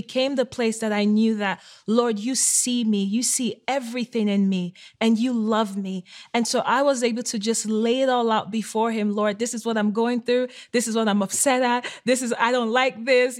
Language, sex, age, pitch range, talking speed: English, female, 30-49, 215-255 Hz, 235 wpm